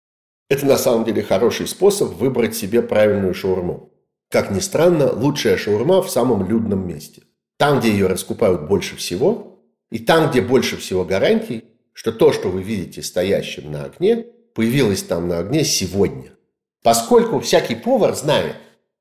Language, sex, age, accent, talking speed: Russian, male, 50-69, native, 150 wpm